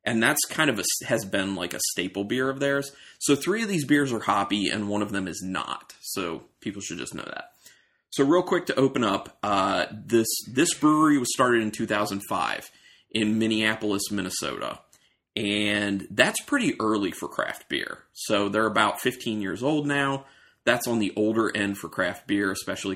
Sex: male